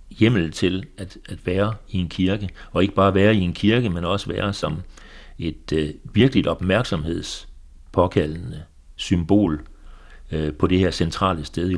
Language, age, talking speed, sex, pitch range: Danish, 60-79, 160 wpm, male, 85-100 Hz